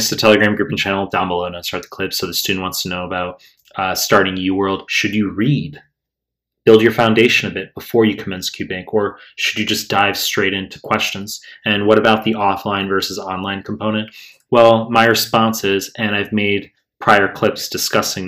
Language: English